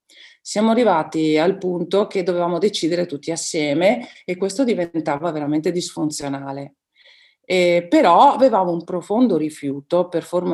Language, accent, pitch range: Italian, native, 150-195 Hz